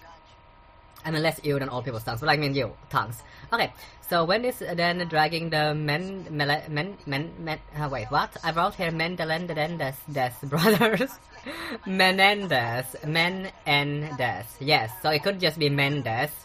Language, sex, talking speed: English, female, 160 wpm